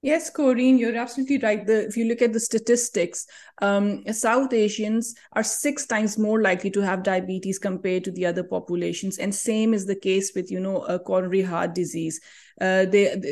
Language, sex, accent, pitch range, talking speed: English, female, Indian, 190-245 Hz, 175 wpm